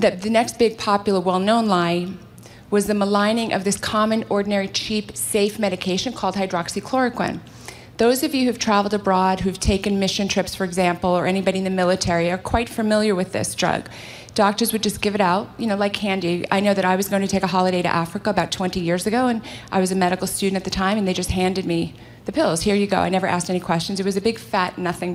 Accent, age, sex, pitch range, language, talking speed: American, 30-49, female, 190-230 Hz, English, 230 wpm